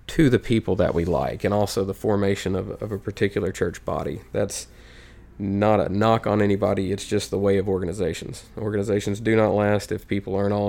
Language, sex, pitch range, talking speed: English, male, 95-105 Hz, 200 wpm